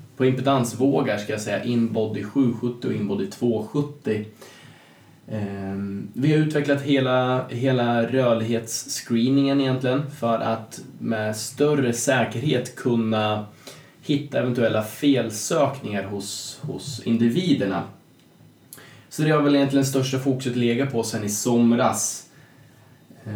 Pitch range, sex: 110-135 Hz, male